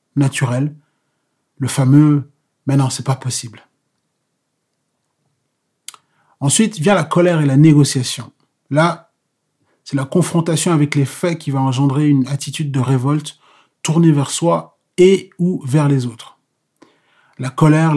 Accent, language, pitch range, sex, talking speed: French, French, 135-155 Hz, male, 130 wpm